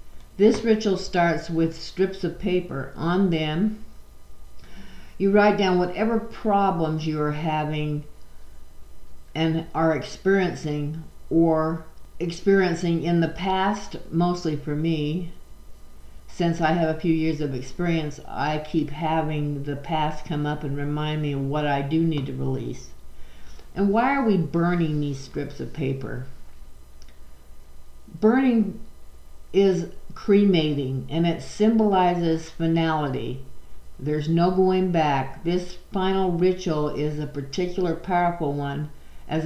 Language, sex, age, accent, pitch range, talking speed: English, female, 50-69, American, 140-175 Hz, 125 wpm